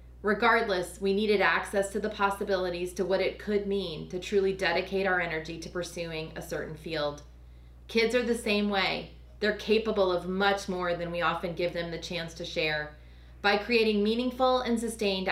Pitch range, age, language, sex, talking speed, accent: 170-210 Hz, 30-49, English, female, 180 wpm, American